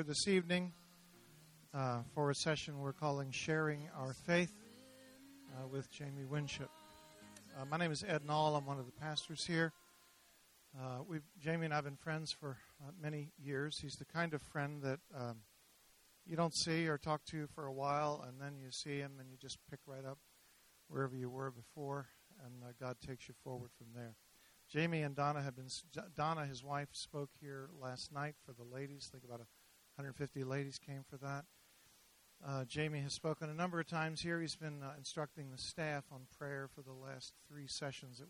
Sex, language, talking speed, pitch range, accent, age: male, English, 195 wpm, 130-155 Hz, American, 50-69